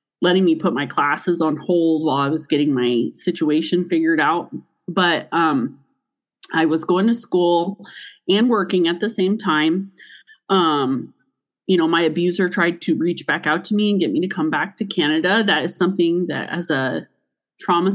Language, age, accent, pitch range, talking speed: English, 30-49, American, 160-205 Hz, 185 wpm